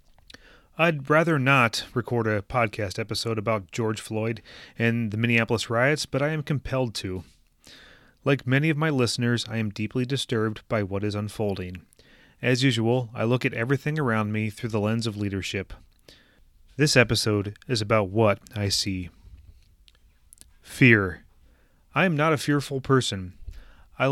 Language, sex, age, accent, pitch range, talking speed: English, male, 30-49, American, 105-135 Hz, 150 wpm